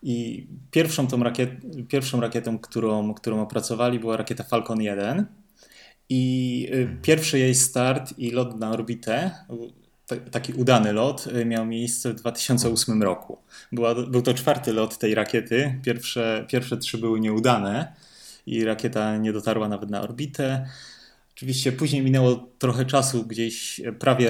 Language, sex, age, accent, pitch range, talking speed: Polish, male, 20-39, native, 110-130 Hz, 140 wpm